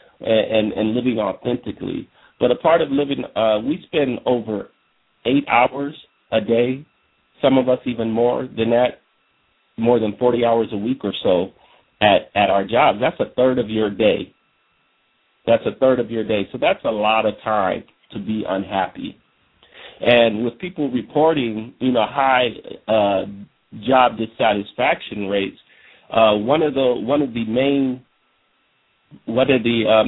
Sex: male